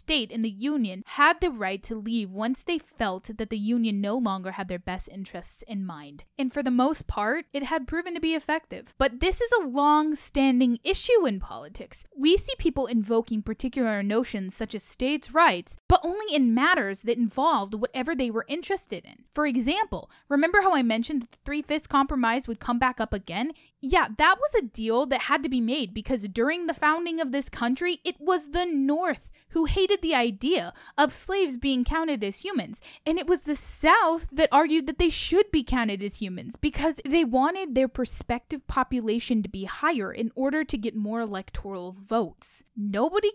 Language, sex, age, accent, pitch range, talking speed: English, female, 10-29, American, 220-310 Hz, 195 wpm